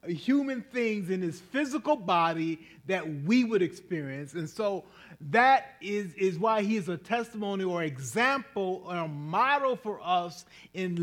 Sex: male